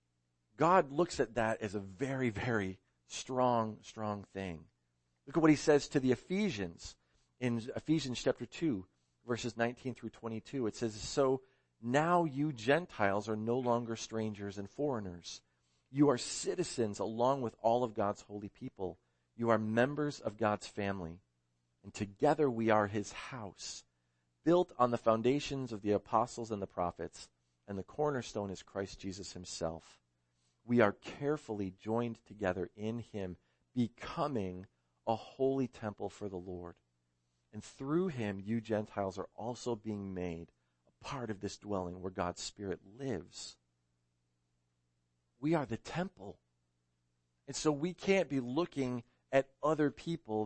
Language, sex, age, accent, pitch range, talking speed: English, male, 40-59, American, 85-125 Hz, 145 wpm